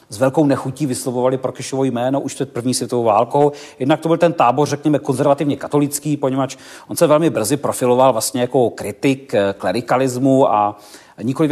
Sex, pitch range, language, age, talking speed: male, 120-140 Hz, Czech, 40-59, 160 wpm